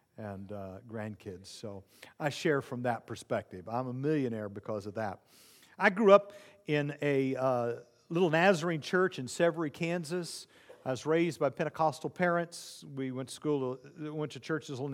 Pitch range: 135-175 Hz